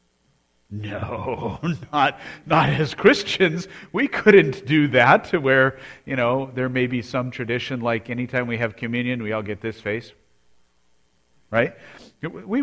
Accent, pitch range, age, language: American, 105-145 Hz, 40-59, English